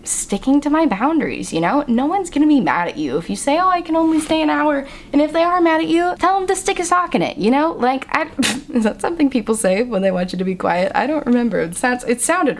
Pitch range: 180-280 Hz